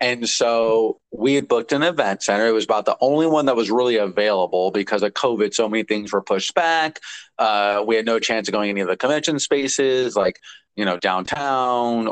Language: English